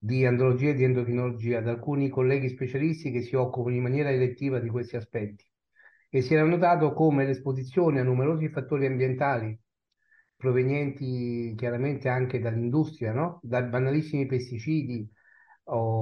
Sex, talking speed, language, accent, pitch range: male, 140 wpm, Italian, native, 120-145 Hz